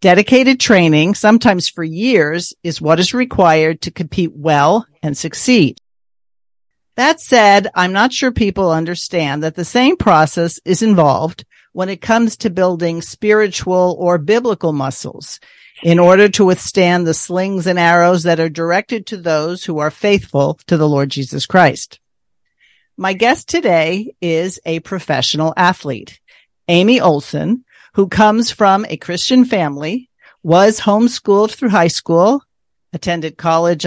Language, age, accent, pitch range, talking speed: English, 50-69, American, 160-210 Hz, 140 wpm